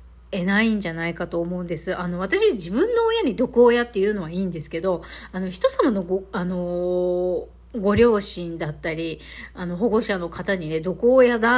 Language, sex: Japanese, female